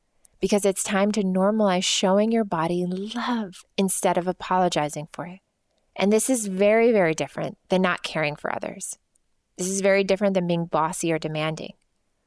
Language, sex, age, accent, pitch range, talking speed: English, female, 20-39, American, 170-200 Hz, 165 wpm